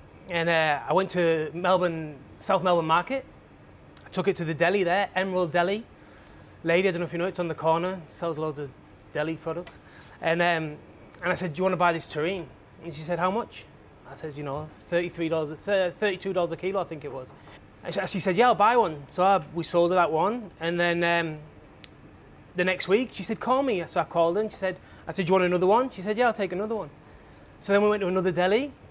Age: 20-39